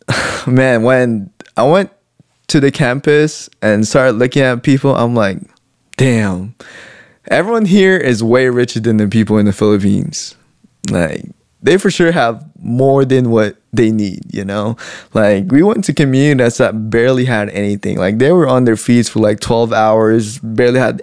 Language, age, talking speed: English, 20-39, 170 wpm